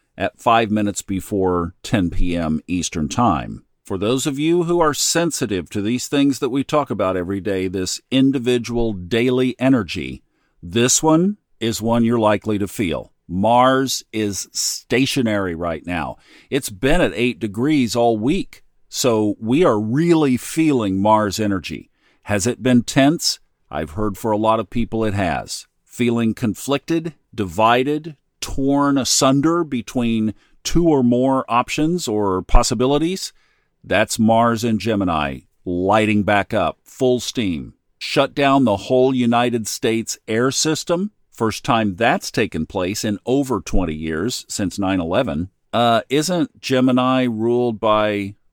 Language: English